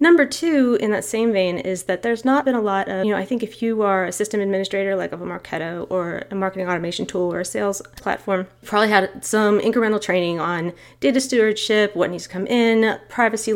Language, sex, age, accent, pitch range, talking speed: English, female, 30-49, American, 180-245 Hz, 225 wpm